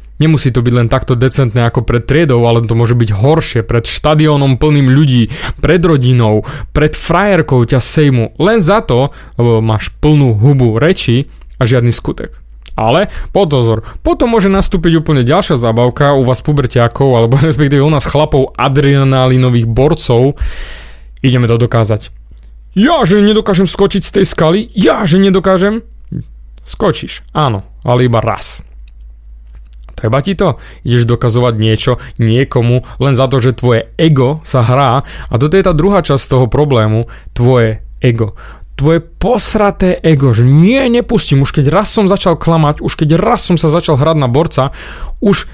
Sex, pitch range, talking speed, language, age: male, 115-155 Hz, 155 wpm, Slovak, 30-49